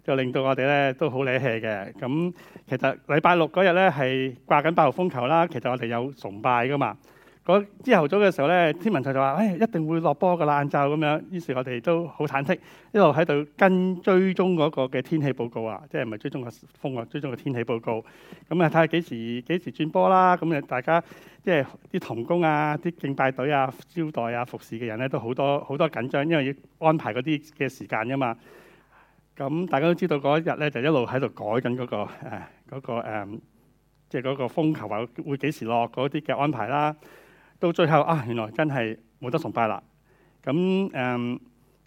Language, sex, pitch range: Chinese, male, 125-165 Hz